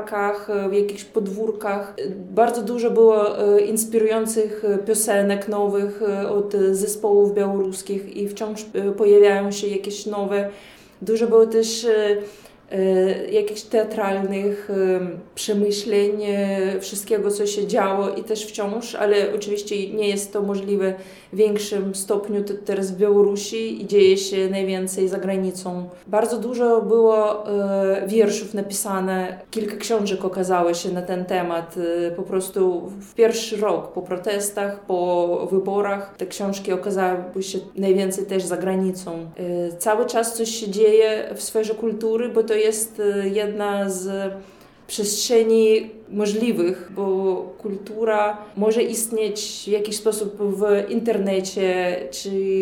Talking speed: 115 wpm